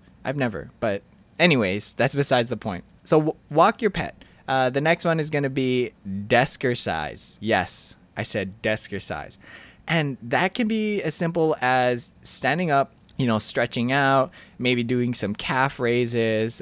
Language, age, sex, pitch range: English, 20-39, male, 110-145 Hz